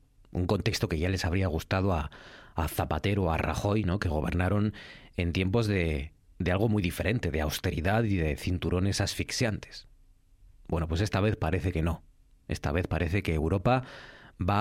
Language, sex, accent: Spanish, male, Spanish